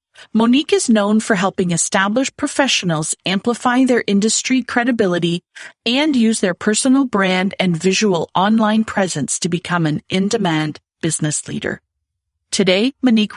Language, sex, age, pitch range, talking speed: English, female, 40-59, 175-225 Hz, 125 wpm